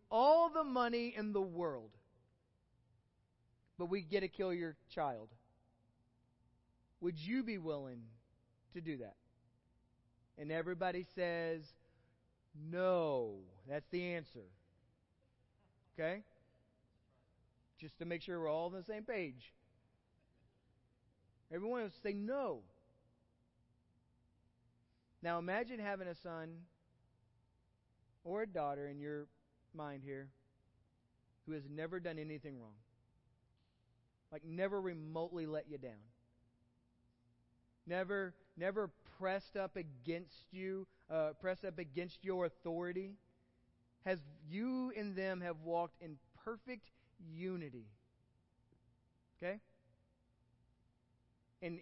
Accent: American